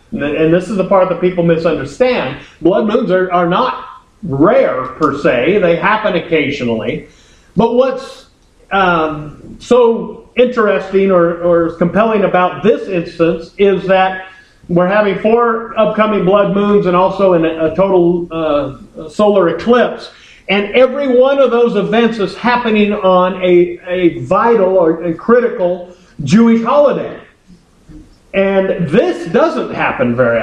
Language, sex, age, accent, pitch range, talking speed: English, male, 50-69, American, 170-220 Hz, 130 wpm